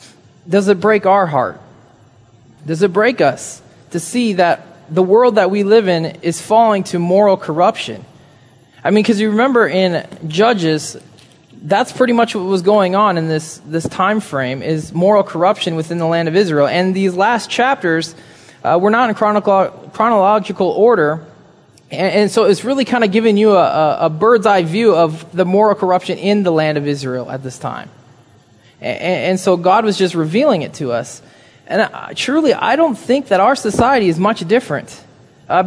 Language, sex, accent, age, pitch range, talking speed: English, male, American, 20-39, 160-210 Hz, 185 wpm